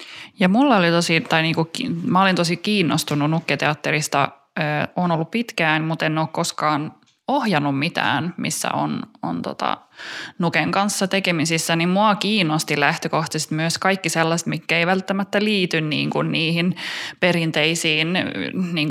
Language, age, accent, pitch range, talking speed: Finnish, 20-39, native, 155-180 Hz, 145 wpm